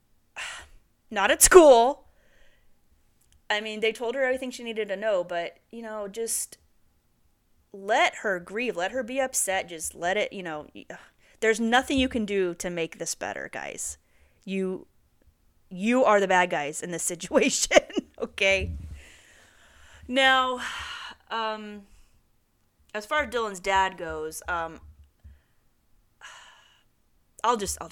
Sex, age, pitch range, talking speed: female, 30-49, 165-225 Hz, 130 wpm